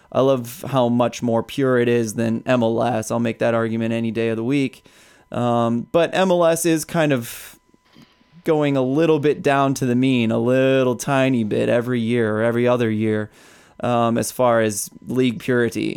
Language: English